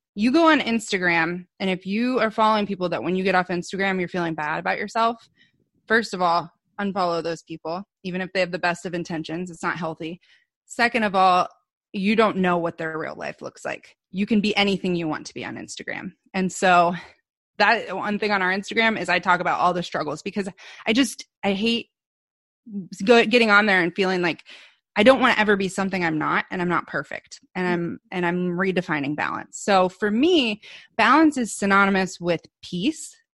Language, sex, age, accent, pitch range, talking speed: English, female, 20-39, American, 175-210 Hz, 205 wpm